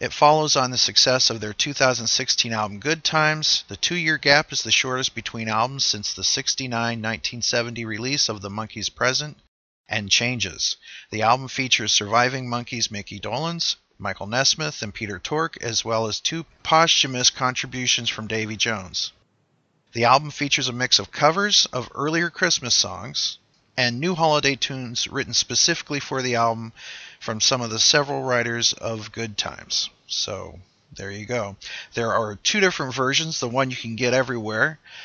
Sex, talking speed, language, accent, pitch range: male, 160 wpm, English, American, 110-140 Hz